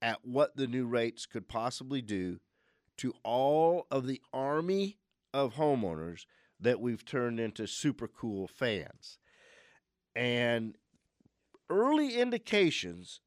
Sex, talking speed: male, 115 wpm